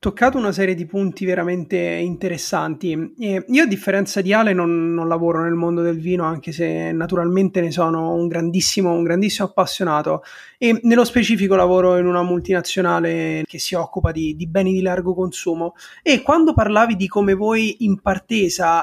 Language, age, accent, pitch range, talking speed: Italian, 30-49, native, 170-200 Hz, 170 wpm